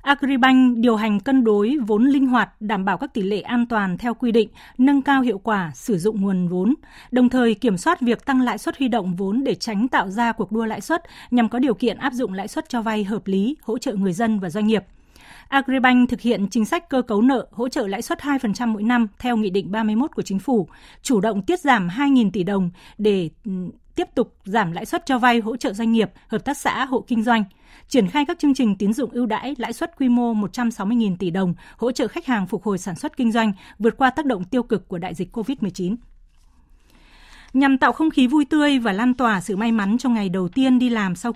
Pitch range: 210-255 Hz